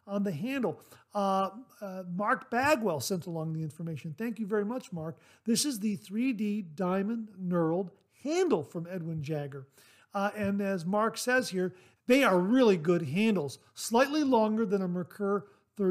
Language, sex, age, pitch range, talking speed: English, male, 50-69, 175-220 Hz, 160 wpm